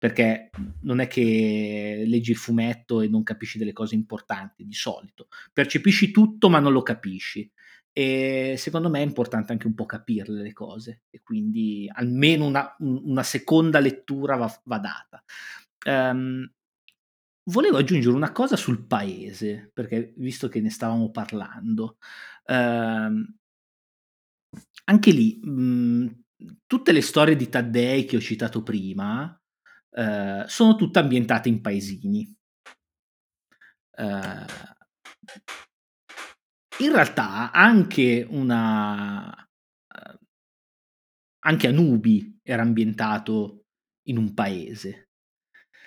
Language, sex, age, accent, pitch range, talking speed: Italian, male, 30-49, native, 110-160 Hz, 110 wpm